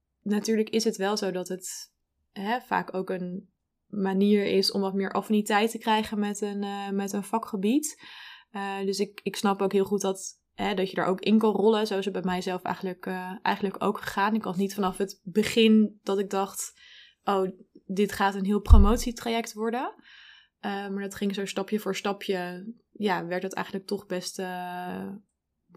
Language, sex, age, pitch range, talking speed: Dutch, female, 20-39, 190-215 Hz, 195 wpm